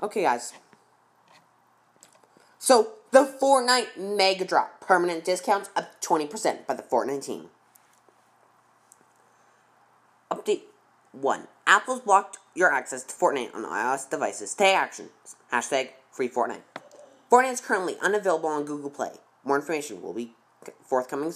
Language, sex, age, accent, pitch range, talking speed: English, female, 20-39, American, 160-250 Hz, 120 wpm